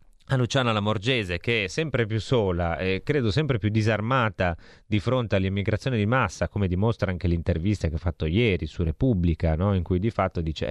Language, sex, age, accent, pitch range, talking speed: Italian, male, 30-49, native, 85-115 Hz, 190 wpm